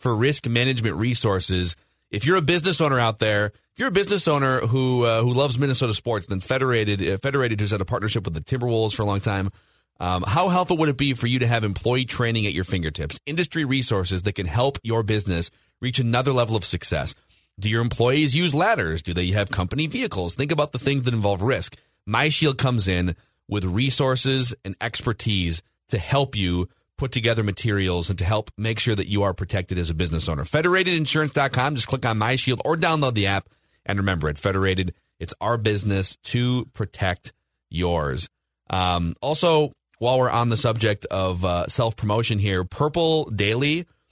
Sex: male